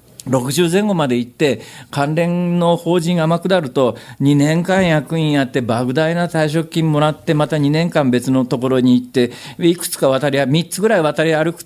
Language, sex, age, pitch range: Japanese, male, 50-69, 120-175 Hz